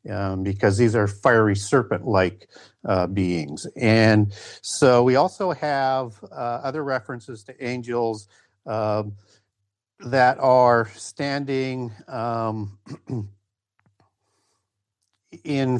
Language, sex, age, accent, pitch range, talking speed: English, male, 50-69, American, 105-130 Hz, 90 wpm